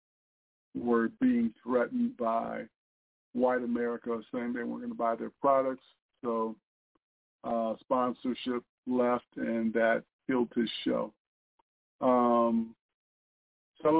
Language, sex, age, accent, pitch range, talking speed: English, male, 50-69, American, 115-155 Hz, 105 wpm